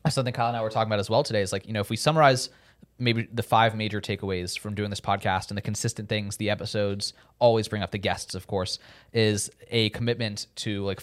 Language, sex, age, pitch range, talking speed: English, male, 20-39, 105-120 Hz, 240 wpm